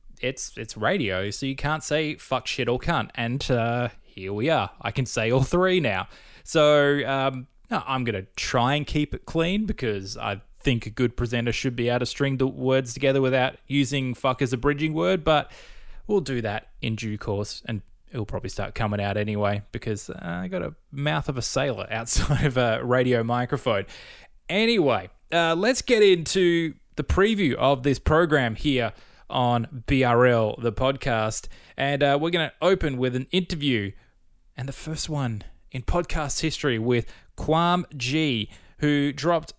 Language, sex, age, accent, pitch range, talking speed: English, male, 20-39, Australian, 115-150 Hz, 180 wpm